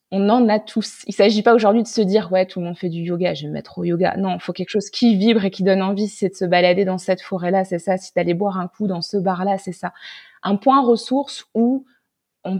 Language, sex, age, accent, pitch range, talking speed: French, female, 20-39, French, 180-215 Hz, 295 wpm